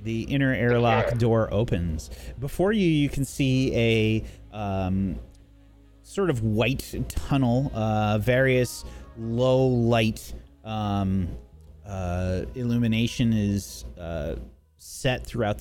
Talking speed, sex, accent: 95 wpm, male, American